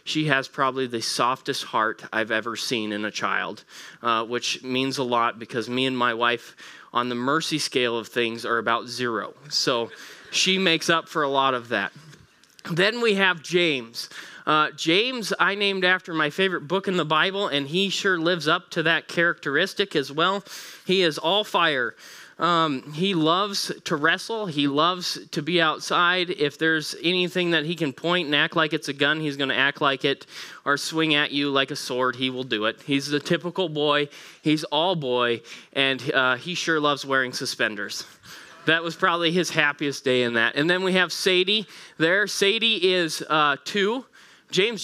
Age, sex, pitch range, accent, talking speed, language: 20-39, male, 130-175 Hz, American, 190 wpm, English